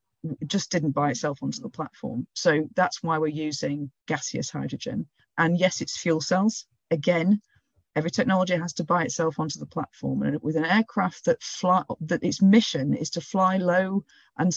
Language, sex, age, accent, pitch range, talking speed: English, female, 40-59, British, 150-190 Hz, 180 wpm